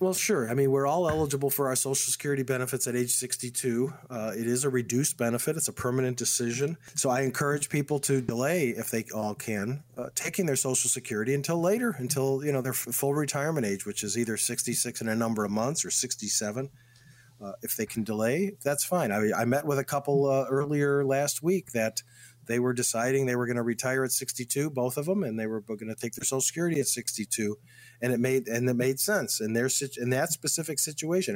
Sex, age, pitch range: male, 40-59, 120-145 Hz